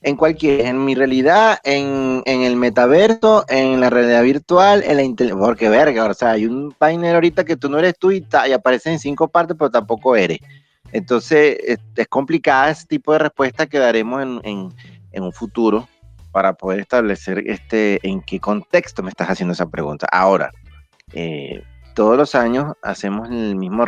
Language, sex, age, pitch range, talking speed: Spanish, male, 30-49, 95-135 Hz, 185 wpm